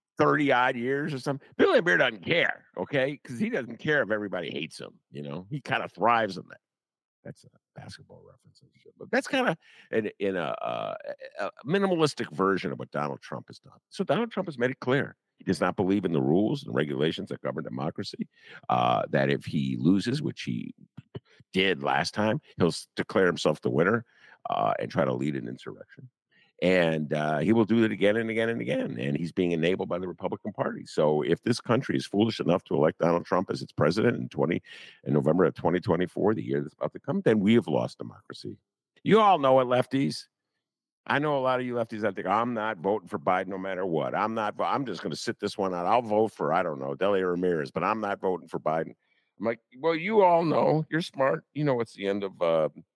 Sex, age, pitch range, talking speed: male, 50-69, 85-140 Hz, 225 wpm